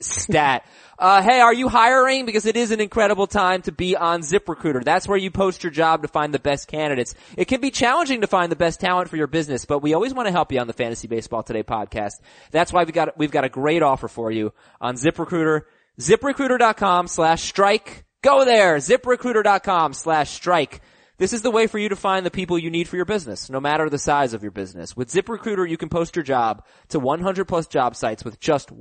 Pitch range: 145-195 Hz